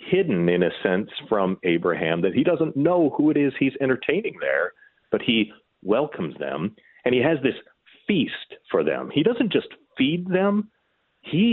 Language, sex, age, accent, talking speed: English, male, 40-59, American, 170 wpm